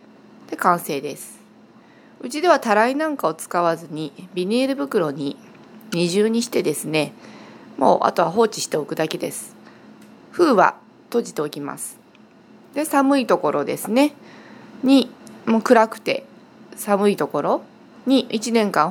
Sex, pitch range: female, 175-240 Hz